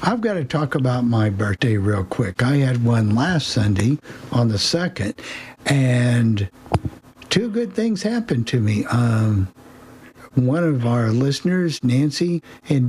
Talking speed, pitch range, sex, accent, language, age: 145 wpm, 115-150 Hz, male, American, English, 60-79